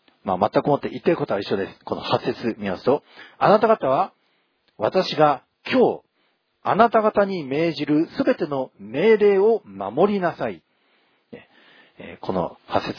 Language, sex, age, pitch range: Japanese, male, 40-59, 130-205 Hz